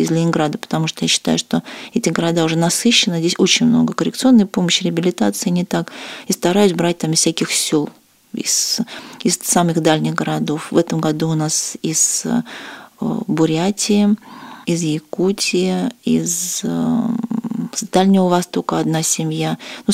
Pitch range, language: 160-210 Hz, Russian